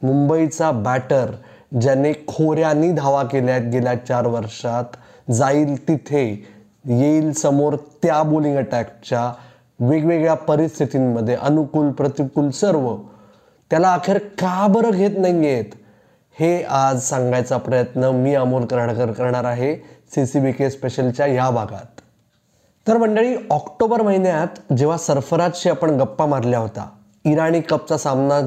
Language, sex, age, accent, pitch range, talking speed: Marathi, male, 20-39, native, 125-155 Hz, 105 wpm